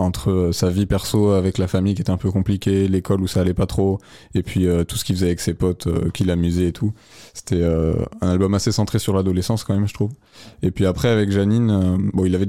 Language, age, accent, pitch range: French, 20-39, French, 95-110 Hz